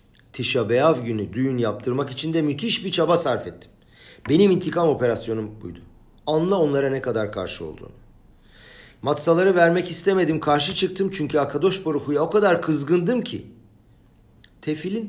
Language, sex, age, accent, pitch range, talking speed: Turkish, male, 50-69, native, 110-155 Hz, 135 wpm